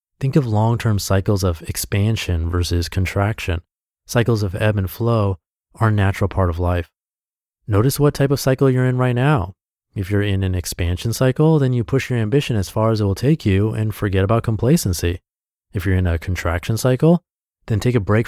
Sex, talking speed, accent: male, 195 wpm, American